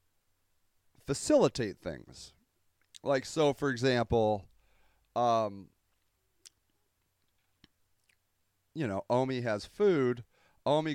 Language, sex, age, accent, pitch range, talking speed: English, male, 40-59, American, 95-135 Hz, 70 wpm